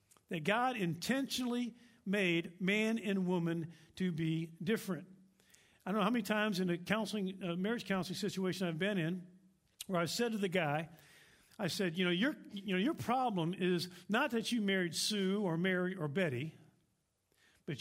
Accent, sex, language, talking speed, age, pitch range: American, male, English, 175 wpm, 50-69, 170-215 Hz